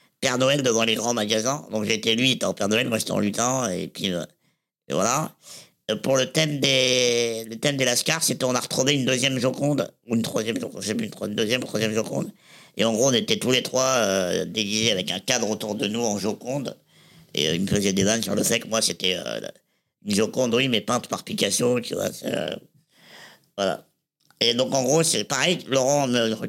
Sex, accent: male, French